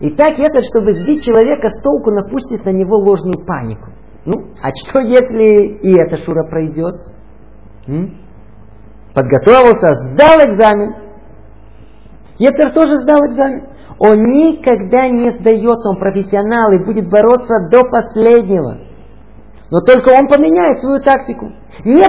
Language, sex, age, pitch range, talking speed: Russian, male, 50-69, 160-255 Hz, 130 wpm